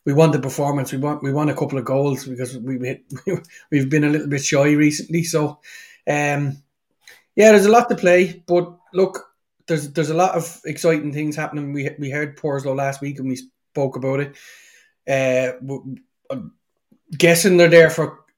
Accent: Irish